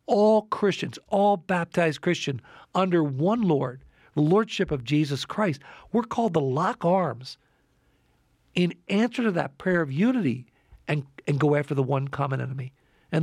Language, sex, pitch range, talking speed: English, male, 135-185 Hz, 155 wpm